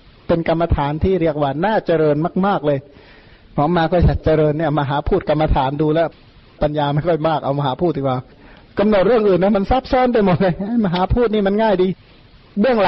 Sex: male